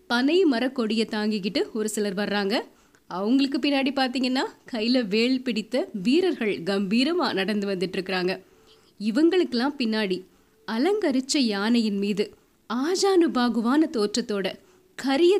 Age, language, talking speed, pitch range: 20-39, Tamil, 105 wpm, 215-290 Hz